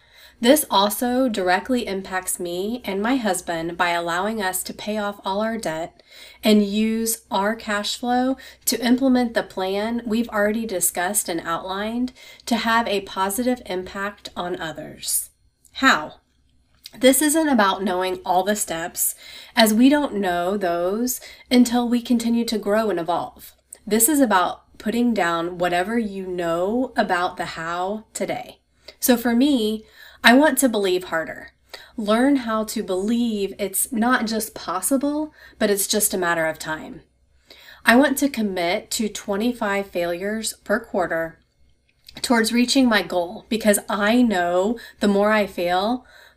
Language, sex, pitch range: English, female, 180-235 Hz